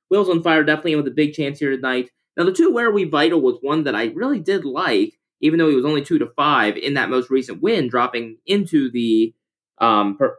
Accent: American